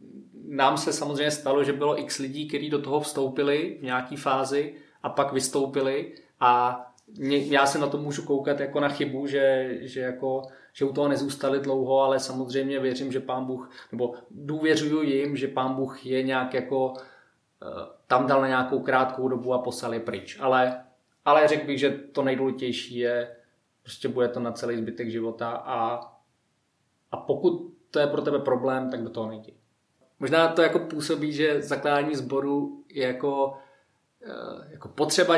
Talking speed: 165 wpm